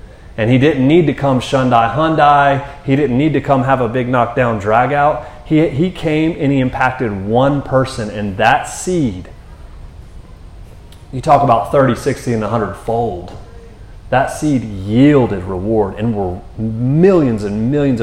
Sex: male